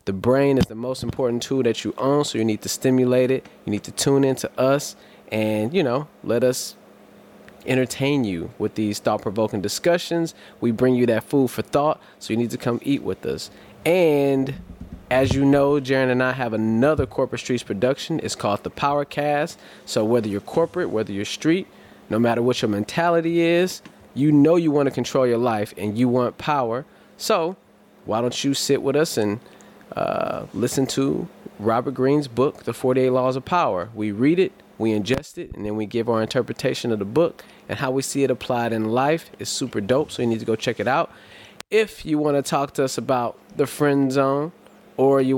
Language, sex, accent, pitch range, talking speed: English, male, American, 120-150 Hz, 205 wpm